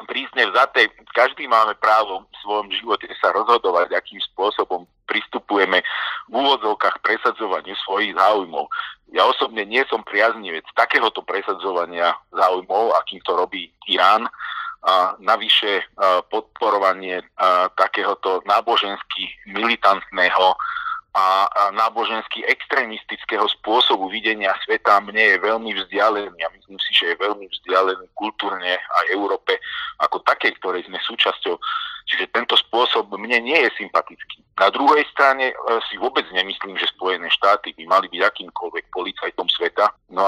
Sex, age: male, 40-59